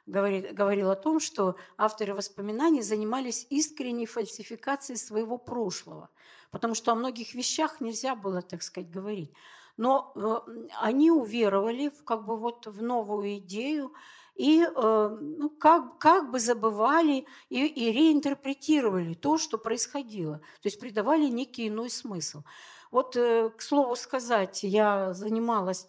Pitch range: 200-265 Hz